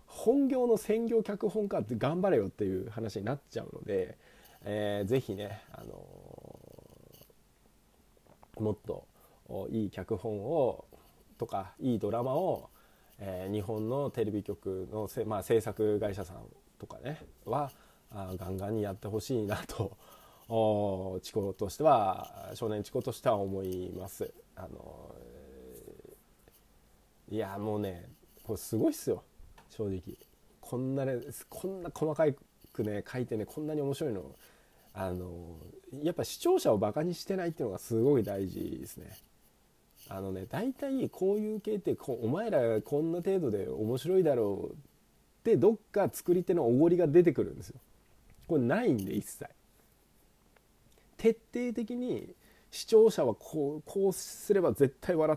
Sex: male